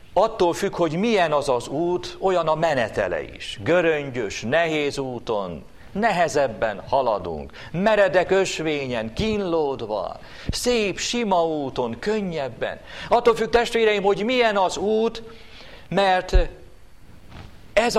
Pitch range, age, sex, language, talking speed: 130-205 Hz, 50-69, male, Hungarian, 105 wpm